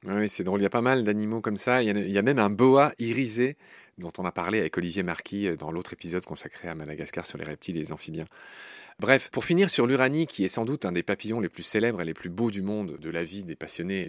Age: 40-59